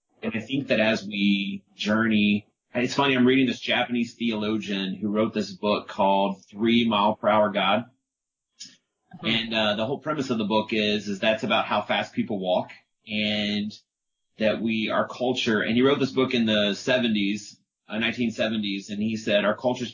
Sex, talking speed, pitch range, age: male, 185 wpm, 100-120 Hz, 30-49